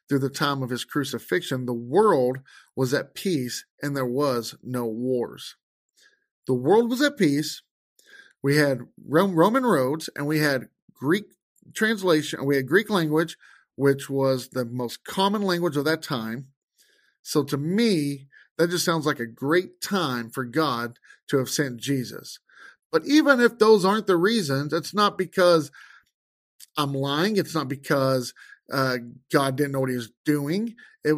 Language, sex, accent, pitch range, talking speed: English, male, American, 130-175 Hz, 160 wpm